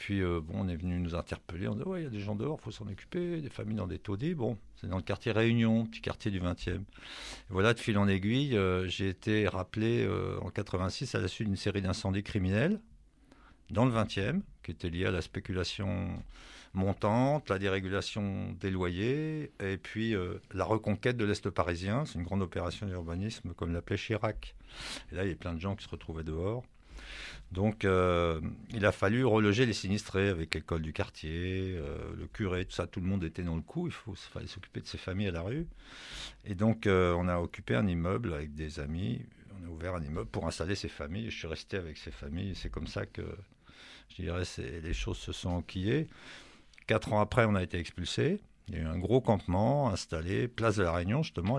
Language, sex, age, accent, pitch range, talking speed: French, male, 50-69, French, 90-110 Hz, 220 wpm